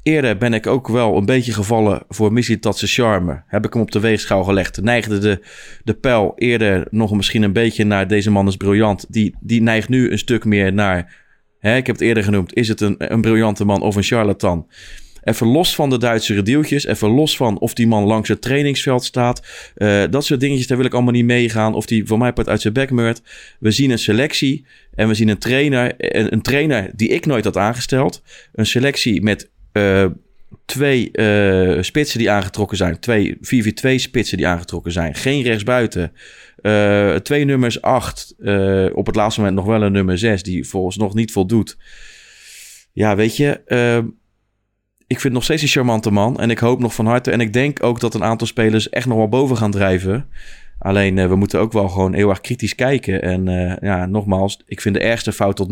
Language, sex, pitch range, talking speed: Dutch, male, 100-120 Hz, 220 wpm